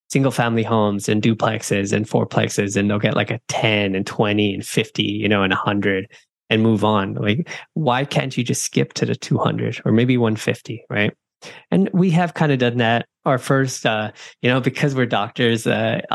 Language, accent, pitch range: English, American, 105-130 Hz